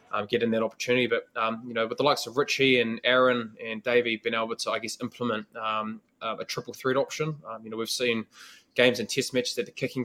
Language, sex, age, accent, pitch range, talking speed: English, male, 20-39, Australian, 110-125 Hz, 240 wpm